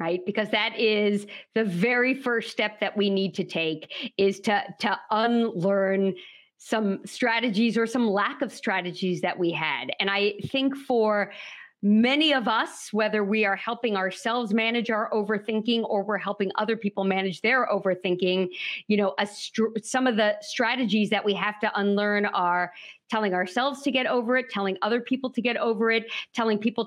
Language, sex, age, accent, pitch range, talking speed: English, female, 50-69, American, 205-245 Hz, 175 wpm